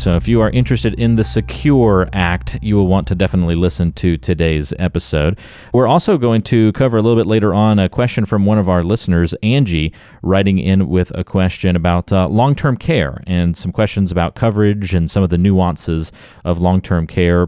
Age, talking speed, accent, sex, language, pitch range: 40-59, 200 wpm, American, male, English, 85-110 Hz